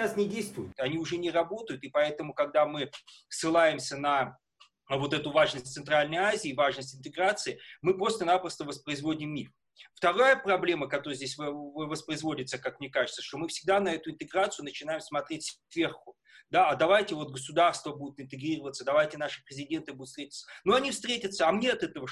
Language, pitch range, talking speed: Russian, 155-205 Hz, 160 wpm